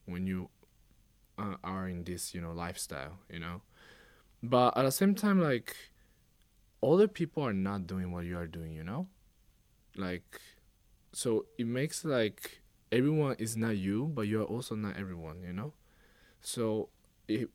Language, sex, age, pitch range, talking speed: English, male, 20-39, 90-115 Hz, 155 wpm